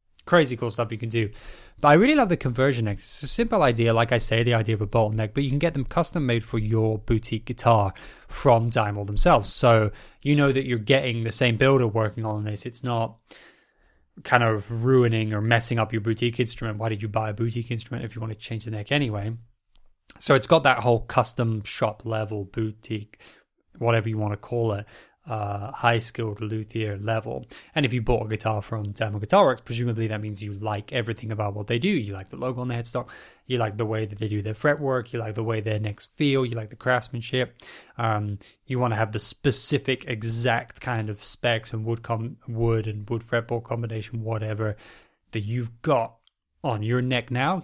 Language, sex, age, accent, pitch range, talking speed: English, male, 20-39, British, 110-125 Hz, 215 wpm